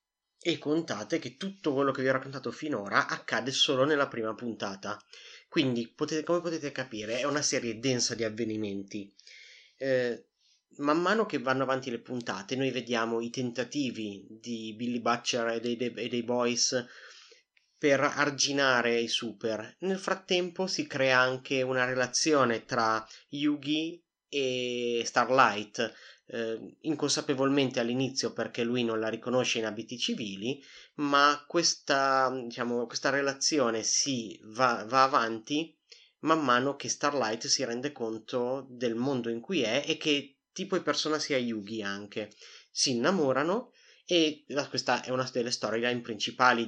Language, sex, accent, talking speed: Italian, male, native, 145 wpm